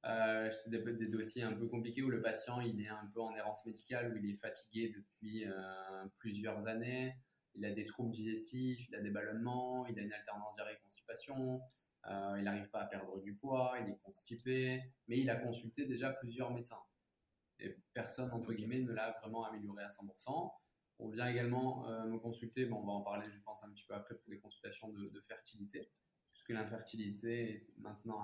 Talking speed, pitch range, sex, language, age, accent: 195 wpm, 105-120 Hz, male, French, 20-39, French